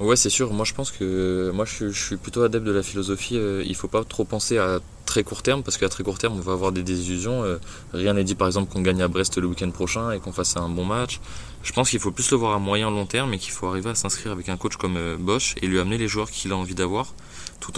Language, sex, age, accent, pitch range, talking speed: French, male, 20-39, French, 90-105 Hz, 285 wpm